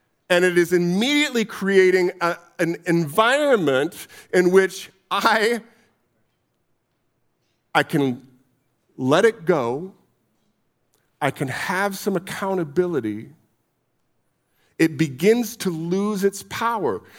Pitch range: 140-195 Hz